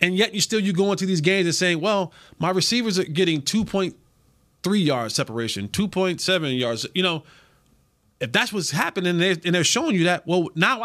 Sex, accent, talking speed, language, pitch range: male, American, 190 wpm, English, 165-225 Hz